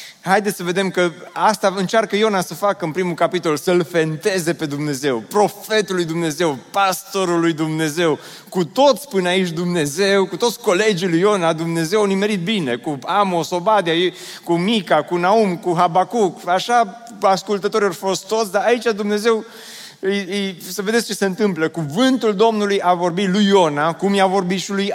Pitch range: 165-205 Hz